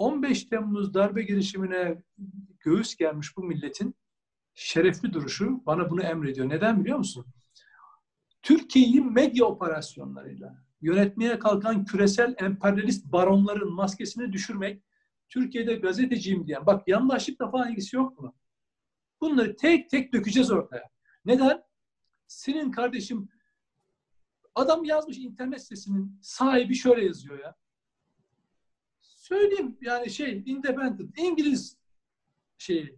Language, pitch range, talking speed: Turkish, 190-255 Hz, 100 wpm